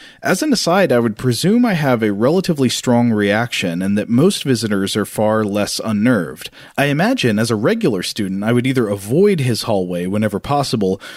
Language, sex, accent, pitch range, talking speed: English, male, American, 105-145 Hz, 185 wpm